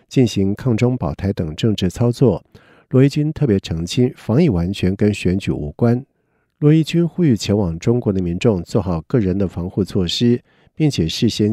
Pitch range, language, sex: 95-125 Hz, Chinese, male